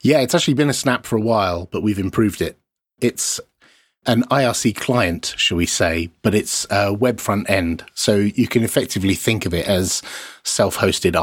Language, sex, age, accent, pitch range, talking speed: English, male, 30-49, British, 90-115 Hz, 185 wpm